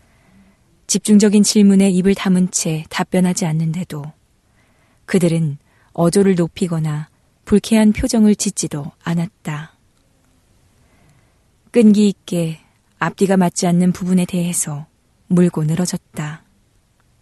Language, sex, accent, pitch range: Korean, female, native, 150-200 Hz